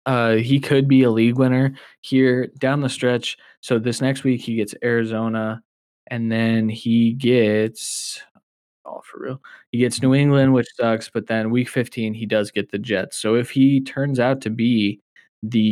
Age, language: 20-39, English